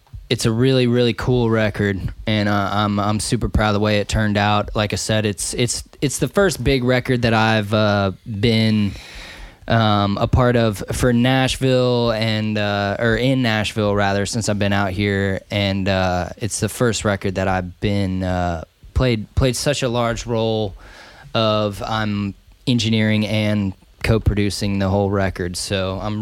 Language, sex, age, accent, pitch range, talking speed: English, male, 20-39, American, 100-115 Hz, 175 wpm